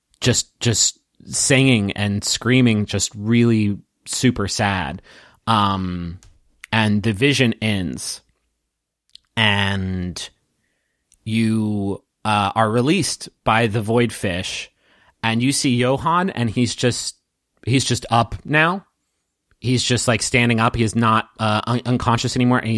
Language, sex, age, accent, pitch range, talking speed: English, male, 30-49, American, 105-125 Hz, 125 wpm